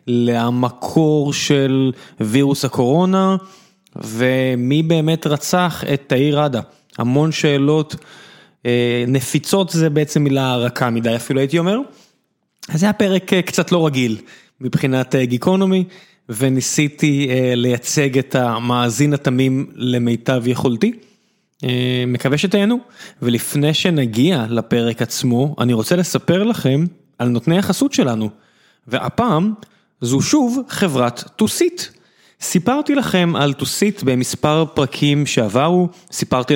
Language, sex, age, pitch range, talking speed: Hebrew, male, 20-39, 130-175 Hz, 105 wpm